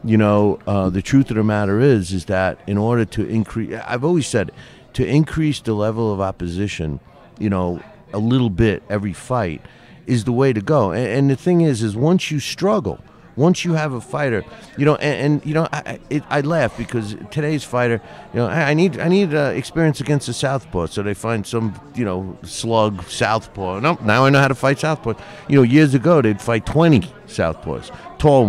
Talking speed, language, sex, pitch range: 210 wpm, English, male, 95-125 Hz